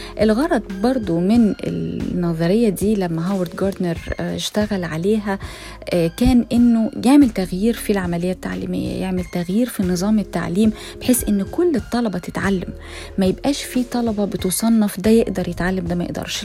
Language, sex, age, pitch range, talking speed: Arabic, female, 20-39, 175-225 Hz, 140 wpm